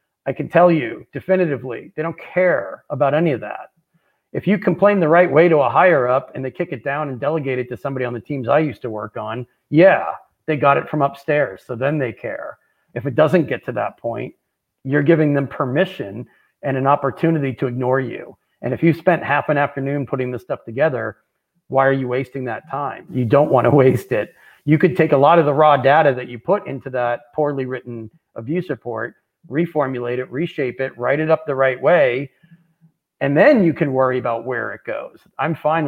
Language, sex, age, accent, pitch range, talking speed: English, male, 40-59, American, 125-160 Hz, 215 wpm